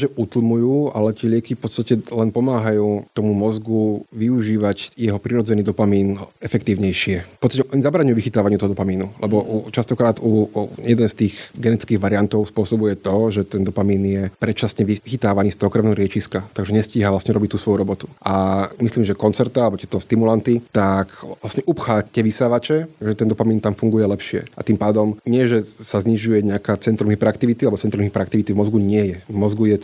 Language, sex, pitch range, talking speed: Slovak, male, 100-120 Hz, 170 wpm